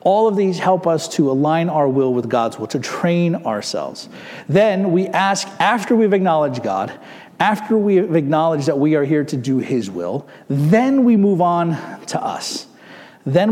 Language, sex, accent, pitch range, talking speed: English, male, American, 135-185 Hz, 180 wpm